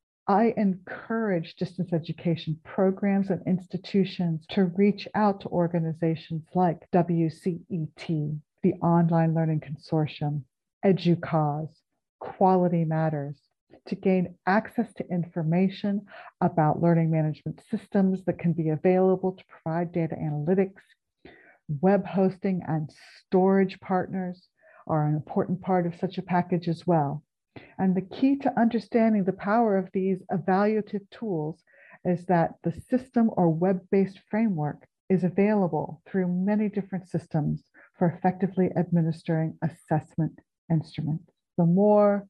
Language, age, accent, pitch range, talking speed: English, 50-69, American, 165-195 Hz, 120 wpm